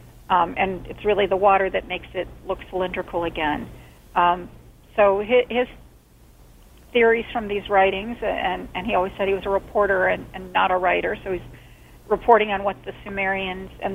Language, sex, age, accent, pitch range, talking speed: English, female, 40-59, American, 185-220 Hz, 180 wpm